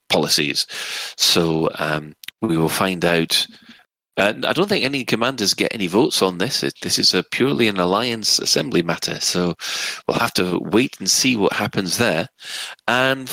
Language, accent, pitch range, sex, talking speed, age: English, British, 90-115 Hz, male, 170 wpm, 40-59